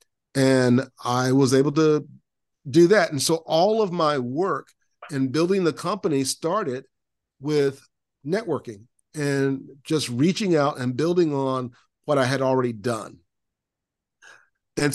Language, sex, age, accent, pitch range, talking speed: English, male, 50-69, American, 125-150 Hz, 135 wpm